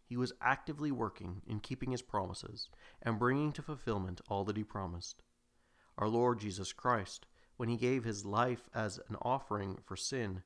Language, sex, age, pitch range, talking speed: English, male, 40-59, 95-125 Hz, 170 wpm